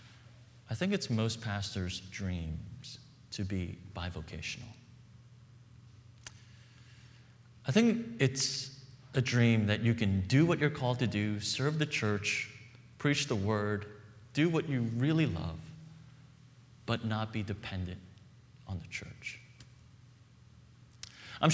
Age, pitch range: 30-49, 110-130 Hz